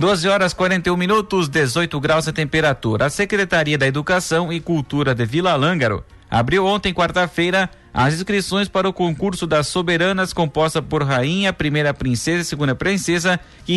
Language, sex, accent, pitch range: Portuguese, male, Brazilian, 145-185 Hz